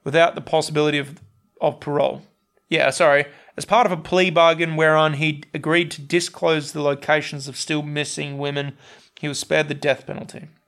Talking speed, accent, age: 175 wpm, Australian, 30-49